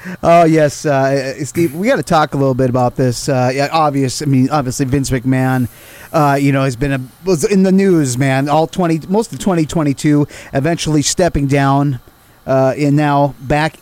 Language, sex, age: English, male, 30-49